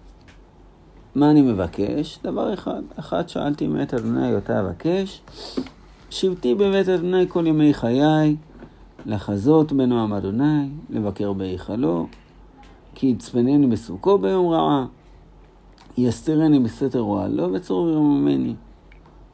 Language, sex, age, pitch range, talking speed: Hebrew, male, 60-79, 95-150 Hz, 100 wpm